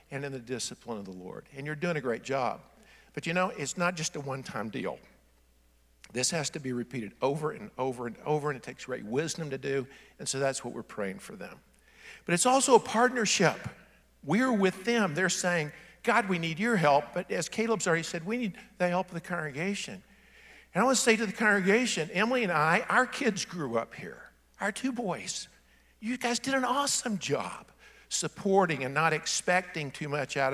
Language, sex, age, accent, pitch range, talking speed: English, male, 60-79, American, 130-205 Hz, 210 wpm